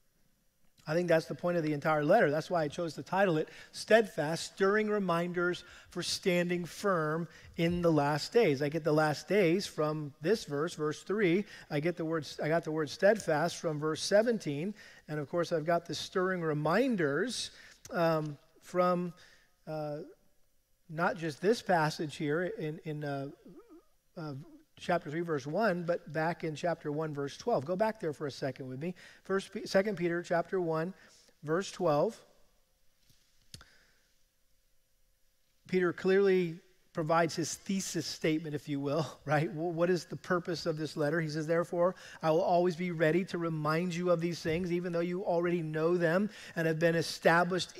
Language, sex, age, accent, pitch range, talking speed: English, male, 40-59, American, 155-185 Hz, 170 wpm